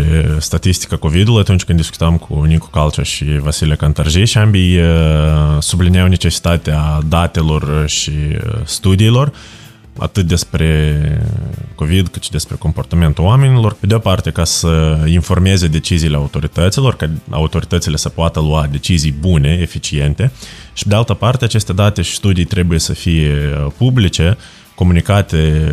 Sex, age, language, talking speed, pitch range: male, 20-39, Romanian, 130 wpm, 75-100 Hz